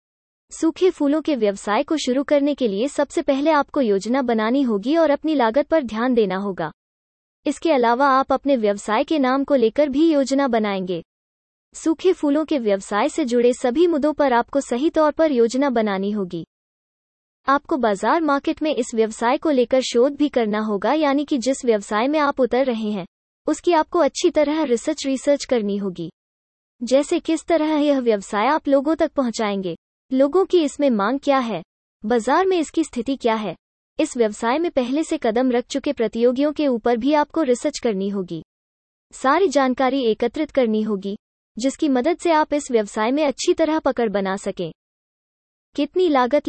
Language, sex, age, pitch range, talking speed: English, female, 20-39, 225-300 Hz, 130 wpm